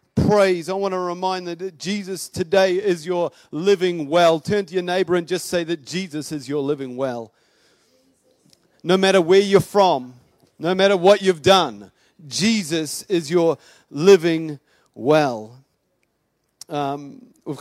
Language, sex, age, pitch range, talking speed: English, male, 40-59, 140-180 Hz, 145 wpm